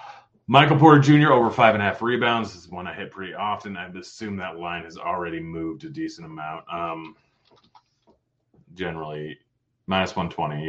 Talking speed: 170 wpm